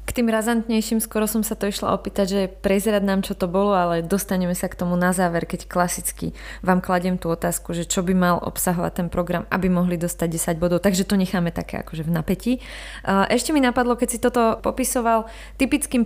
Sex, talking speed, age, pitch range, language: female, 200 wpm, 20-39, 185-220 Hz, Slovak